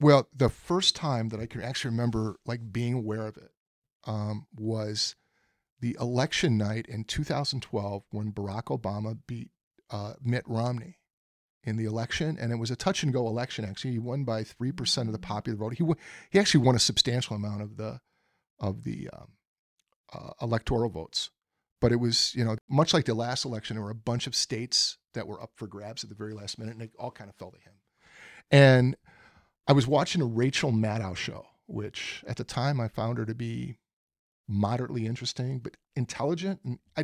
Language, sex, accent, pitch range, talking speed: English, male, American, 110-140 Hz, 200 wpm